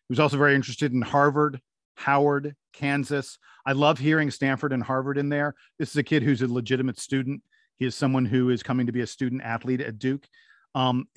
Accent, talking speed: American, 210 wpm